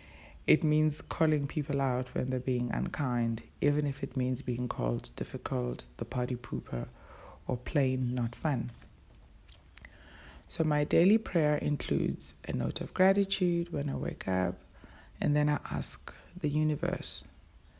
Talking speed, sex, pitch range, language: 140 wpm, female, 100-145 Hz, English